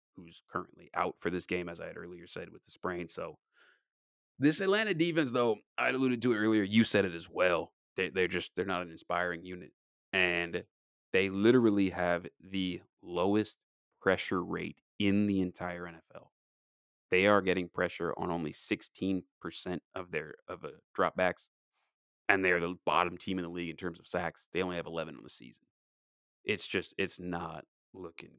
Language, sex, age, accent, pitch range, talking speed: English, male, 30-49, American, 85-105 Hz, 180 wpm